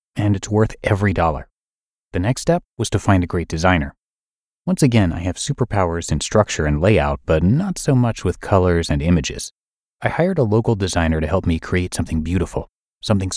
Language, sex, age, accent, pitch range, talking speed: English, male, 30-49, American, 85-125 Hz, 195 wpm